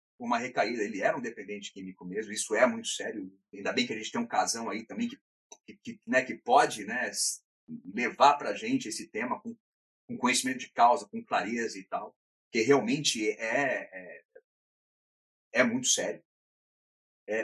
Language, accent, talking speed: Portuguese, Brazilian, 175 wpm